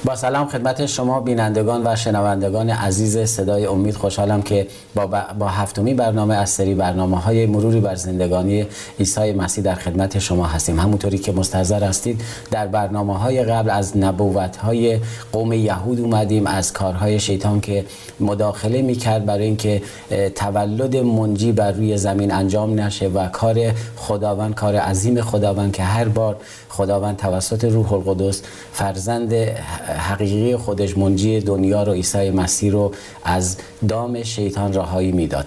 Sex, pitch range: male, 95-115 Hz